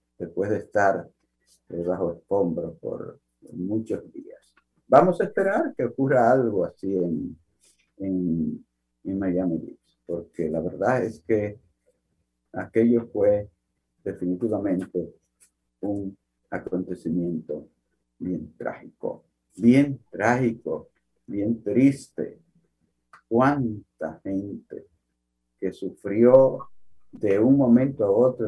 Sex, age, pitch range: male, 50-69, 80-120 Hz